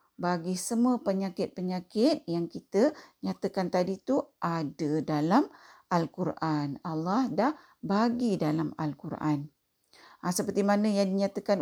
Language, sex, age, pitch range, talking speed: Malay, female, 50-69, 175-220 Hz, 110 wpm